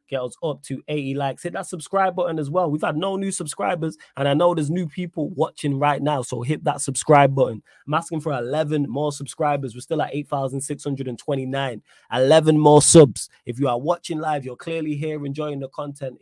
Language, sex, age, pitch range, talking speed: English, male, 20-39, 125-150 Hz, 205 wpm